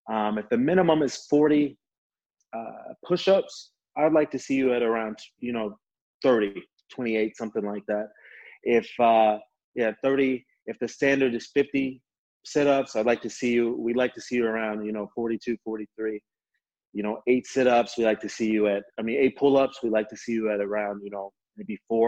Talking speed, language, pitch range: 195 wpm, English, 110-140 Hz